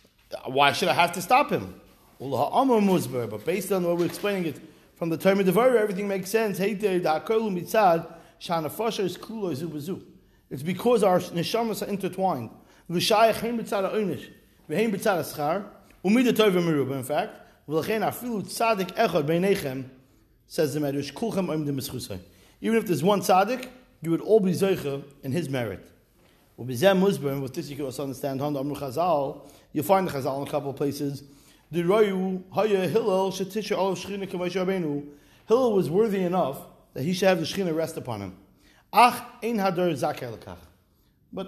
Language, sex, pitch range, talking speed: English, male, 145-210 Hz, 105 wpm